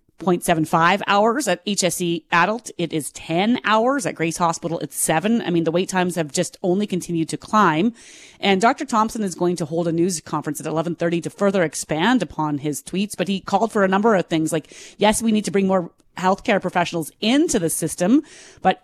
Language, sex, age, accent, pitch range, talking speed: English, female, 30-49, American, 170-215 Hz, 200 wpm